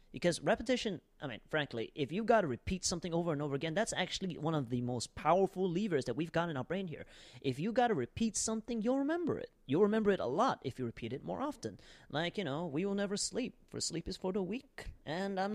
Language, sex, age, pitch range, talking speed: English, male, 30-49, 135-200 Hz, 250 wpm